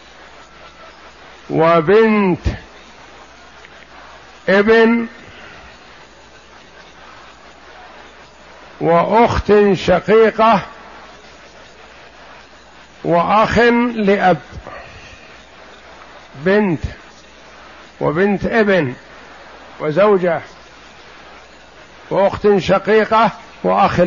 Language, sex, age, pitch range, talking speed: Arabic, male, 60-79, 170-210 Hz, 30 wpm